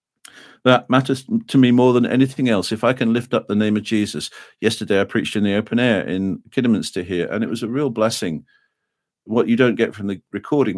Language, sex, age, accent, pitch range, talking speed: English, male, 50-69, British, 95-120 Hz, 225 wpm